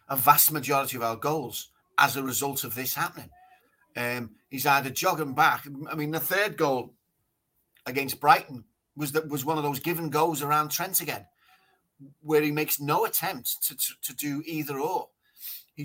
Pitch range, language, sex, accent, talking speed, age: 125-155 Hz, English, male, British, 180 wpm, 30-49